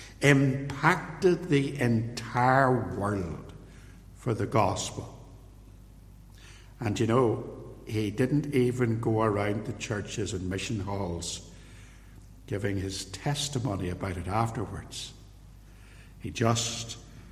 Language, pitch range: English, 95-120 Hz